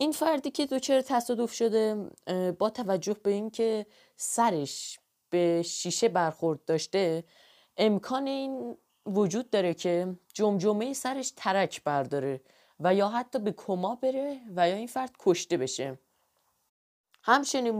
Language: Persian